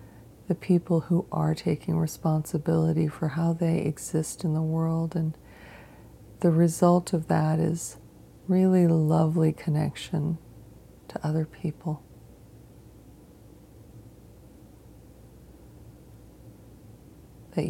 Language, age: English, 40-59